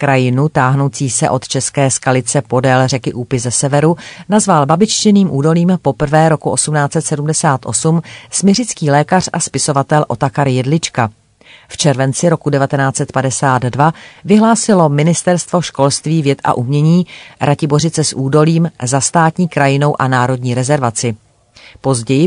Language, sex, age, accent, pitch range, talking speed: Czech, female, 40-59, native, 130-160 Hz, 115 wpm